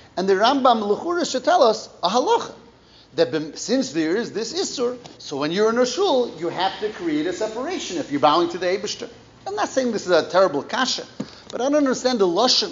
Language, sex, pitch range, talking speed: English, male, 160-250 Hz, 220 wpm